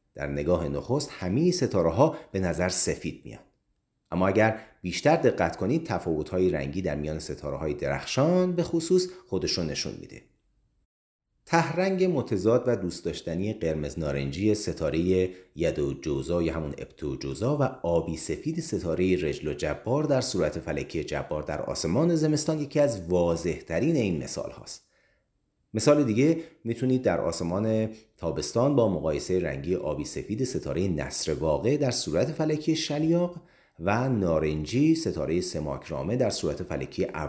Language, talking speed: Persian, 145 wpm